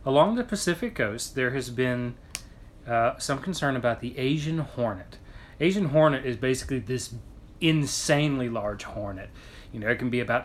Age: 30-49